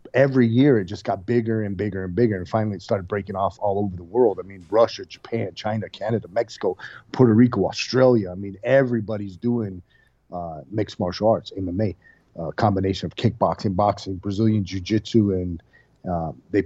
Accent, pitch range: American, 100-120 Hz